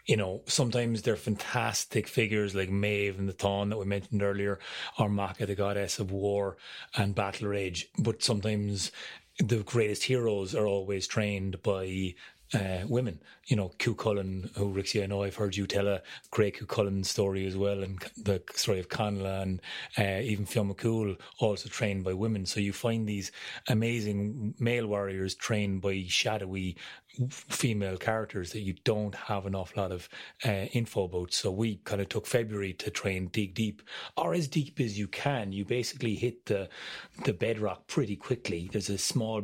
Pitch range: 100-110 Hz